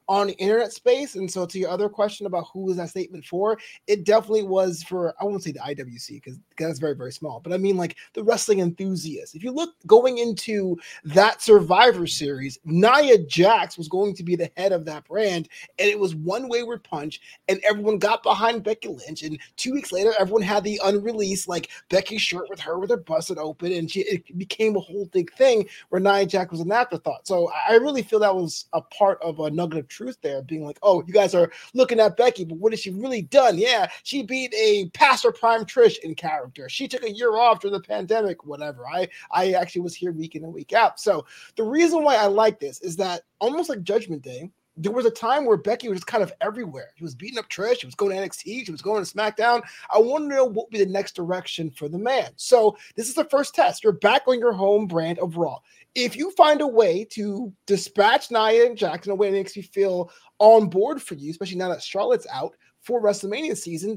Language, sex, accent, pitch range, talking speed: English, male, American, 175-225 Hz, 230 wpm